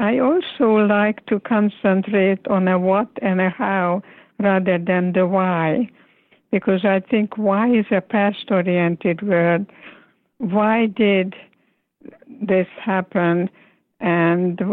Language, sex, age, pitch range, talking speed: English, female, 60-79, 185-210 Hz, 120 wpm